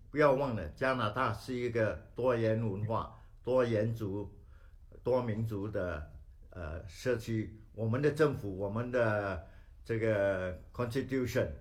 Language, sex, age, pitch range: Chinese, male, 60-79, 100-130 Hz